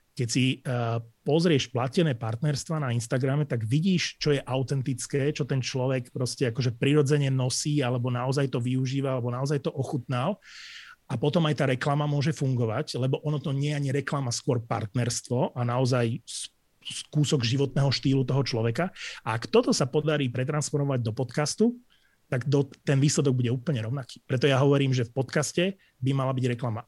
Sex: male